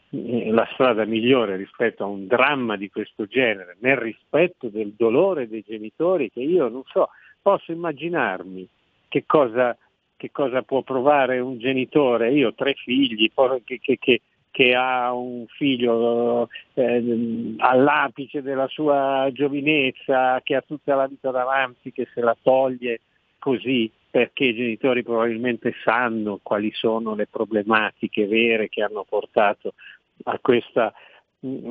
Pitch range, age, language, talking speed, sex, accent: 115-135 Hz, 50-69, Italian, 130 wpm, male, native